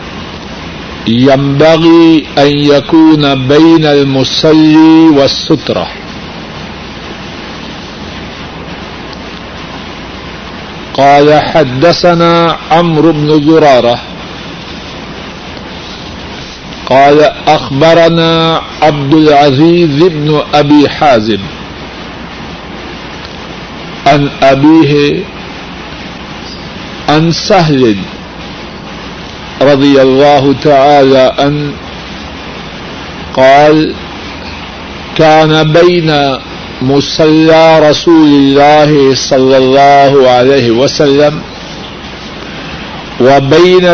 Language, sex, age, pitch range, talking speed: Urdu, male, 60-79, 140-160 Hz, 50 wpm